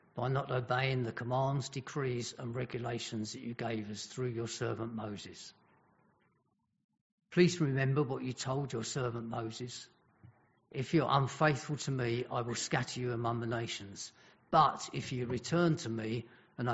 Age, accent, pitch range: 50-69, British, 115-135 Hz